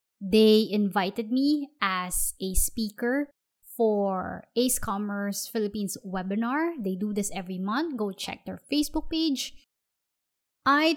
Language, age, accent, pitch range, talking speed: English, 20-39, Filipino, 195-250 Hz, 120 wpm